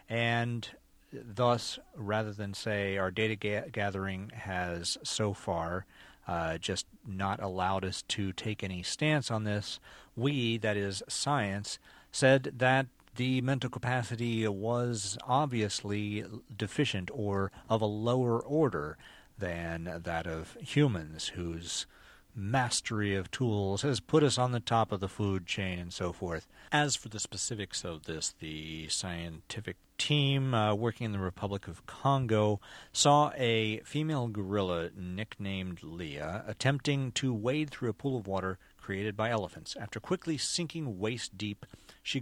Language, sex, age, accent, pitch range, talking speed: English, male, 40-59, American, 95-125 Hz, 140 wpm